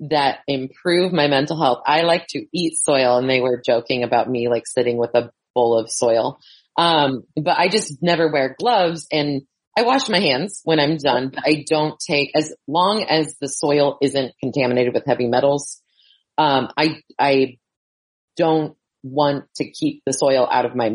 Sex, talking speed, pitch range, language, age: female, 185 wpm, 125-150 Hz, English, 30-49